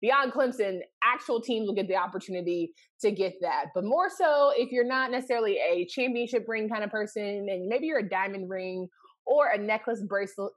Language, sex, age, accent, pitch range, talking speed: English, female, 20-39, American, 185-260 Hz, 195 wpm